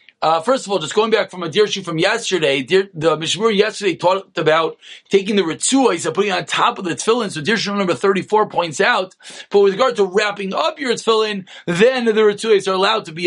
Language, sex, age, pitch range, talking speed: English, male, 30-49, 175-220 Hz, 230 wpm